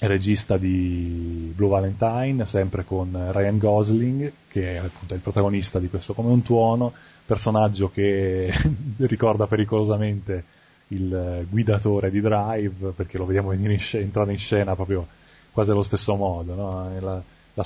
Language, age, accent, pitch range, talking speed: English, 20-39, Italian, 95-110 Hz, 145 wpm